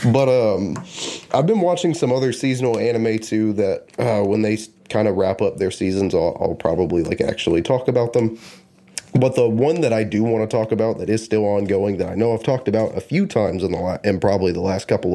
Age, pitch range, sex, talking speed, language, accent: 30-49, 105-130 Hz, male, 225 wpm, English, American